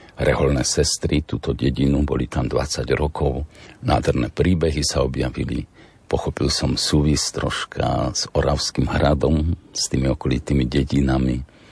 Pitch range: 70-95 Hz